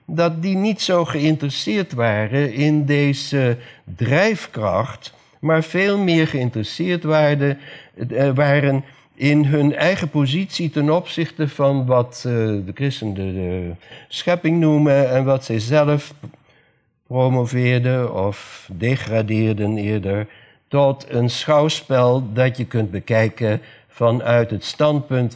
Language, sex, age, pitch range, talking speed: Dutch, male, 60-79, 115-155 Hz, 105 wpm